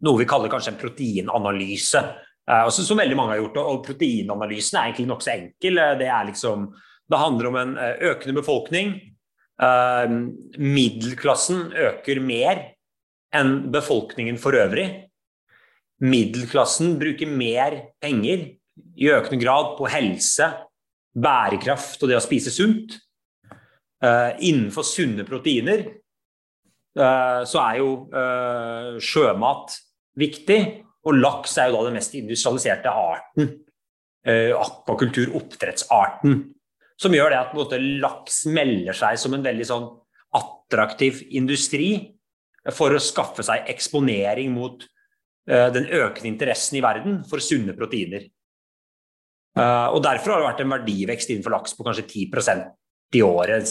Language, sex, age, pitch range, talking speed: English, male, 30-49, 120-150 Hz, 130 wpm